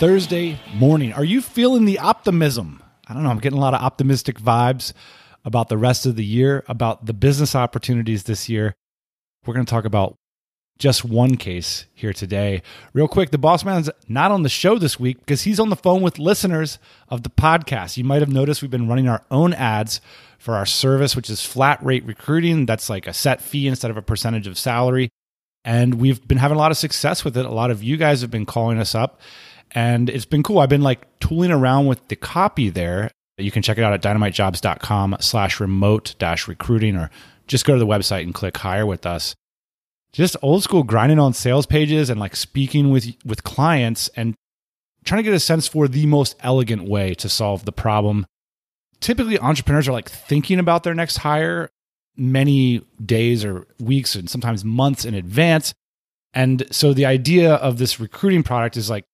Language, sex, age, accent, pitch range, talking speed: English, male, 30-49, American, 110-145 Hz, 200 wpm